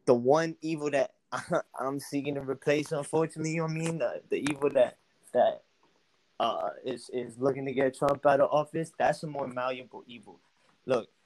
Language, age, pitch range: English, 20-39, 130-160 Hz